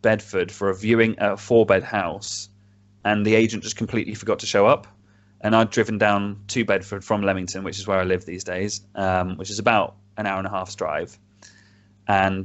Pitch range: 95-110 Hz